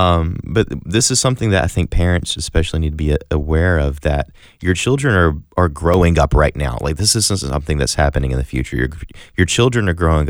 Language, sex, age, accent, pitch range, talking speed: English, male, 30-49, American, 75-90 Hz, 220 wpm